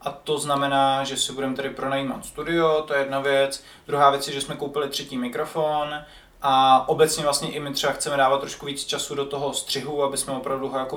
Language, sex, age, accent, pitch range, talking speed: Czech, male, 20-39, native, 140-170 Hz, 220 wpm